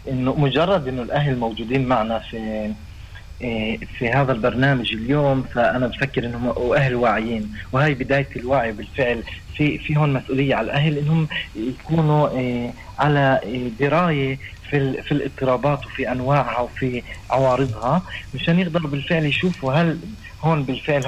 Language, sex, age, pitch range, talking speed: Hebrew, male, 30-49, 120-145 Hz, 135 wpm